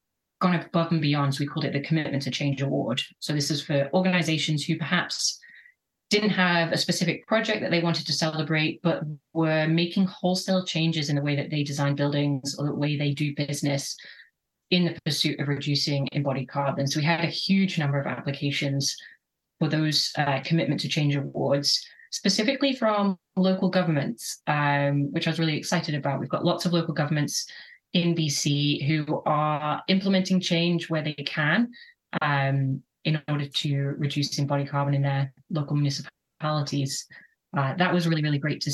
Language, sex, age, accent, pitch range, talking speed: English, female, 20-39, British, 145-180 Hz, 175 wpm